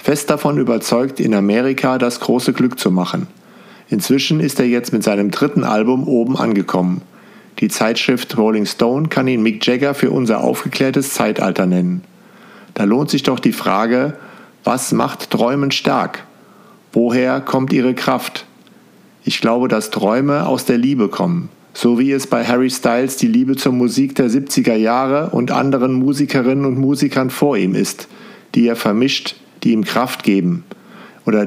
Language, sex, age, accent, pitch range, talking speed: German, male, 50-69, German, 110-140 Hz, 160 wpm